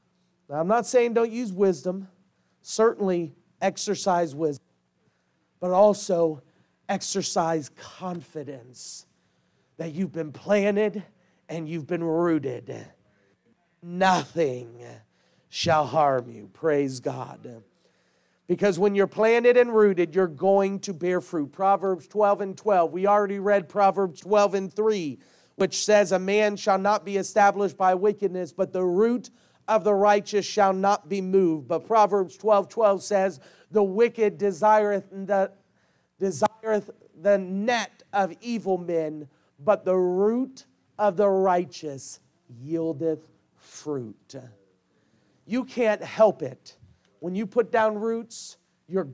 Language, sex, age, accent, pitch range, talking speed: English, male, 40-59, American, 160-205 Hz, 130 wpm